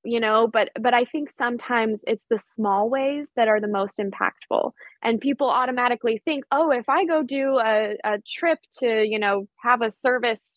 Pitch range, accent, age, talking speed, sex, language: 210-245 Hz, American, 10-29, 195 wpm, female, English